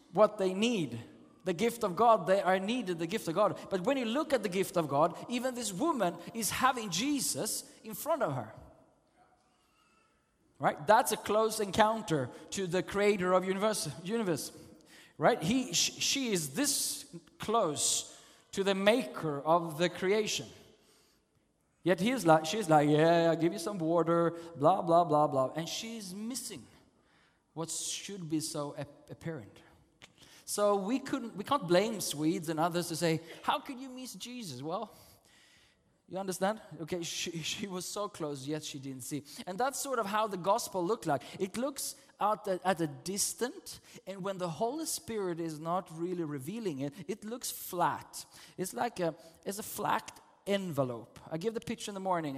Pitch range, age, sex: 165-230 Hz, 20-39, male